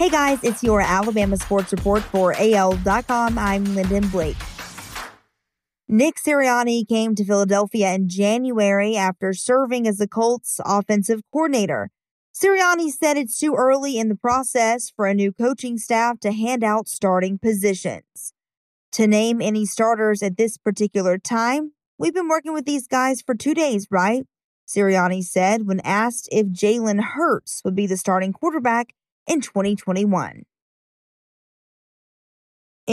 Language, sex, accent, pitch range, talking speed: English, female, American, 195-245 Hz, 140 wpm